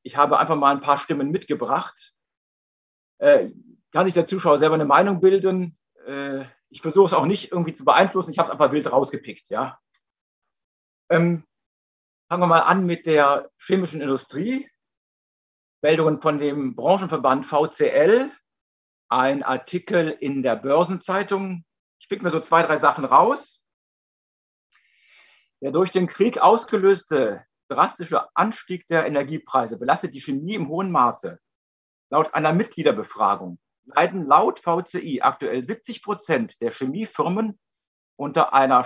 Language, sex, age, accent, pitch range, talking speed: German, male, 50-69, German, 145-195 Hz, 135 wpm